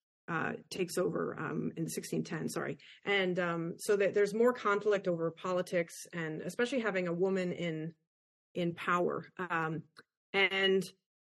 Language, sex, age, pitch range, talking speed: English, female, 30-49, 175-205 Hz, 140 wpm